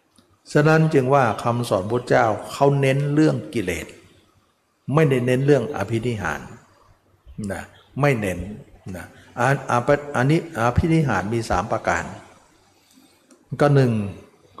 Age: 60-79